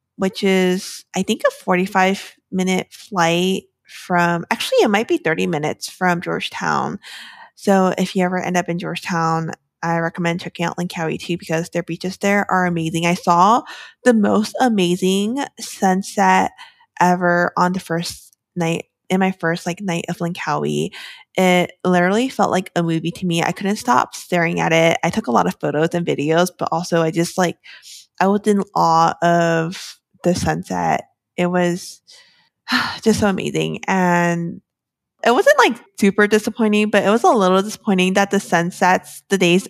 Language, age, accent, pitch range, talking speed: English, 20-39, American, 175-200 Hz, 170 wpm